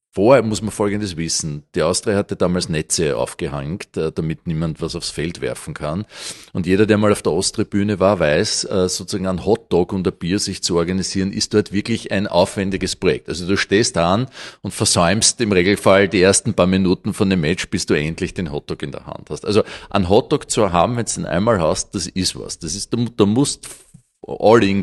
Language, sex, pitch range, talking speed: German, male, 95-120 Hz, 210 wpm